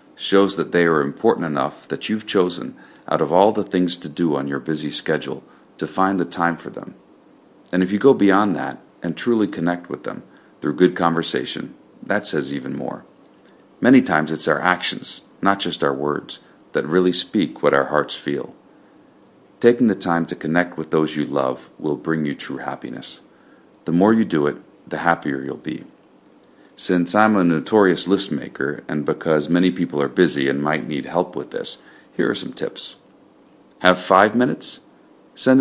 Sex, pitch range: male, 75-95 Hz